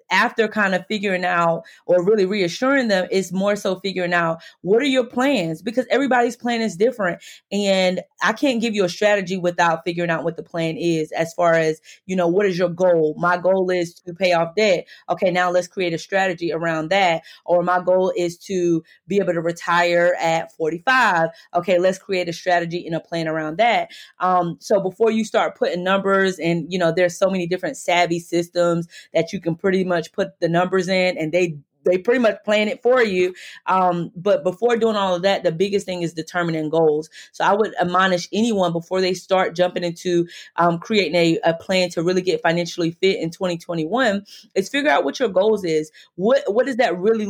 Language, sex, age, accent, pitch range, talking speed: English, female, 20-39, American, 170-210 Hz, 205 wpm